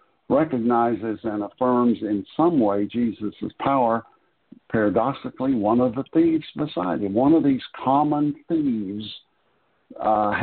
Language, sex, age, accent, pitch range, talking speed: English, male, 60-79, American, 110-165 Hz, 120 wpm